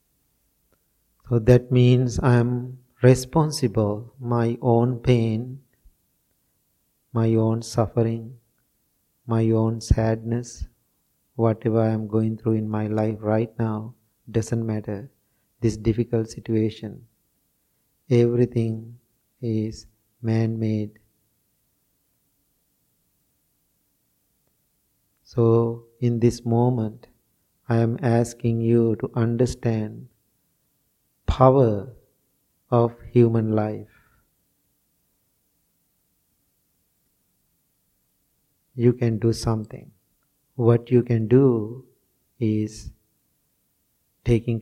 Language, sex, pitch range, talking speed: English, male, 110-125 Hz, 75 wpm